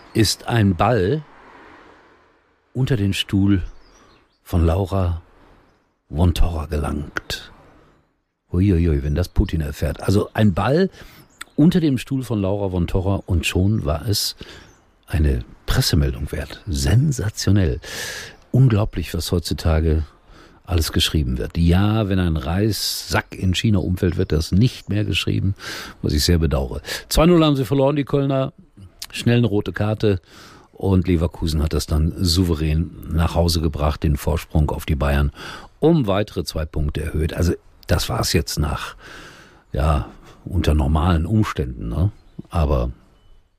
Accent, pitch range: German, 80-110 Hz